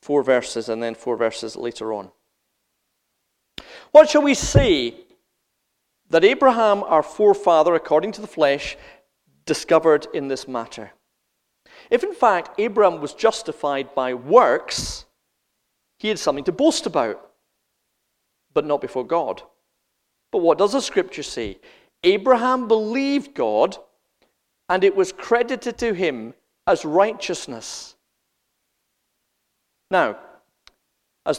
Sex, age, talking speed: male, 40-59, 115 wpm